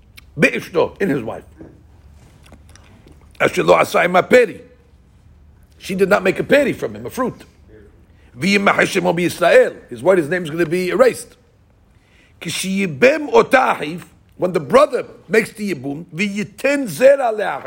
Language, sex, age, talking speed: English, male, 60-79, 100 wpm